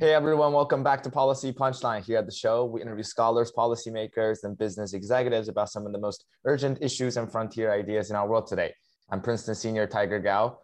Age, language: 20-39, English